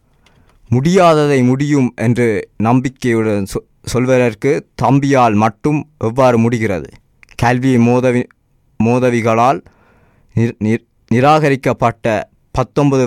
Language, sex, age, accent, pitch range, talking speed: Tamil, male, 20-39, native, 115-130 Hz, 70 wpm